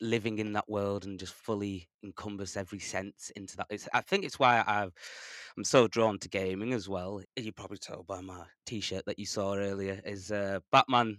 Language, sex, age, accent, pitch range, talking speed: English, male, 20-39, British, 95-110 Hz, 205 wpm